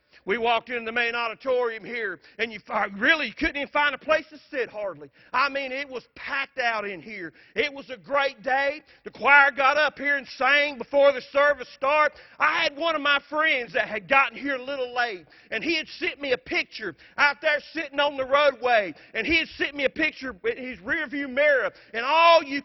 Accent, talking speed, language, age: American, 225 wpm, English, 40-59